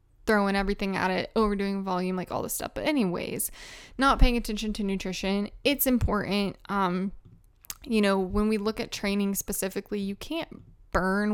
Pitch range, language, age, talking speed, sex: 195-230 Hz, English, 10-29, 165 wpm, female